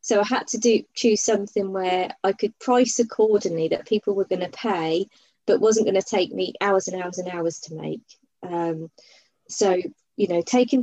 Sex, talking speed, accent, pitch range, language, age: female, 200 wpm, British, 185-225 Hz, English, 20-39